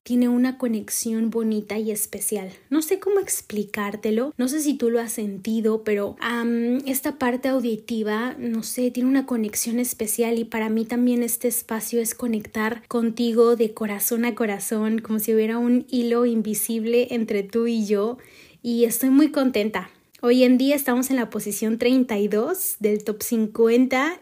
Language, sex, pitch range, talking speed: Spanish, female, 220-255 Hz, 160 wpm